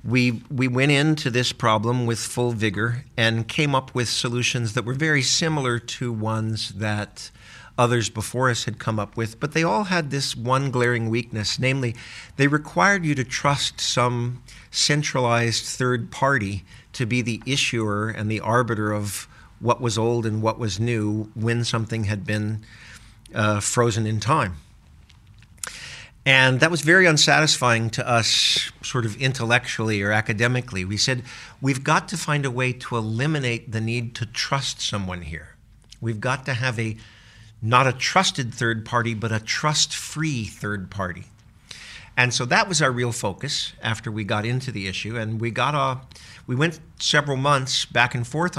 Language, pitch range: English, 110-135 Hz